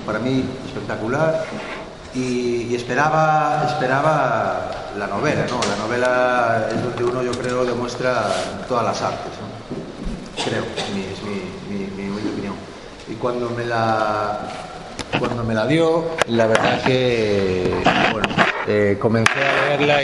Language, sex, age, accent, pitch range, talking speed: Spanish, male, 30-49, Spanish, 110-135 Hz, 145 wpm